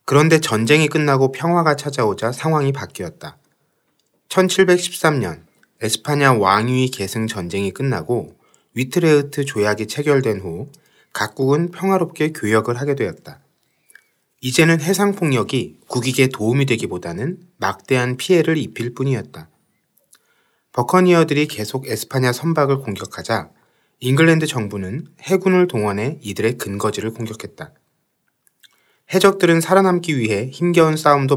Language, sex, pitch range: Korean, male, 110-160 Hz